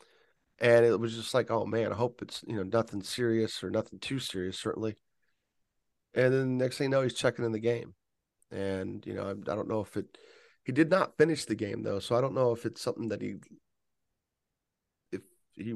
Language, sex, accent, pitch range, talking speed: English, male, American, 100-120 Hz, 230 wpm